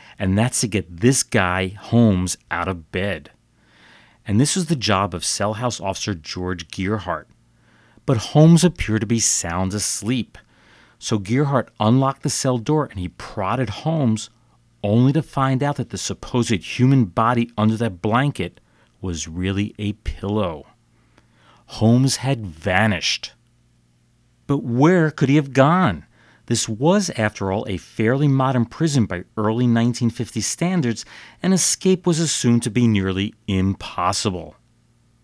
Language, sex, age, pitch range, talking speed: English, male, 40-59, 100-135 Hz, 140 wpm